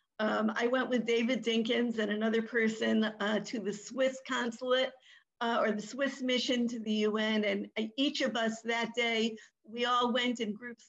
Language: English